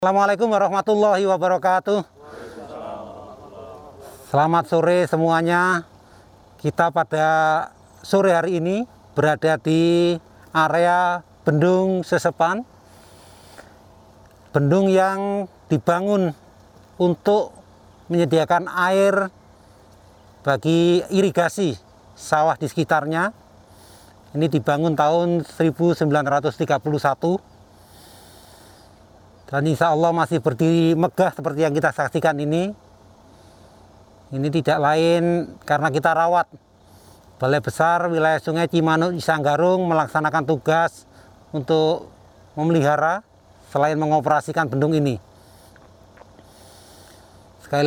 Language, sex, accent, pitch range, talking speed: Indonesian, male, native, 110-170 Hz, 80 wpm